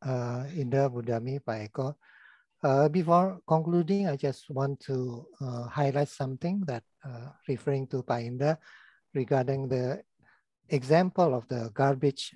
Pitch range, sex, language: 130-155 Hz, male, Indonesian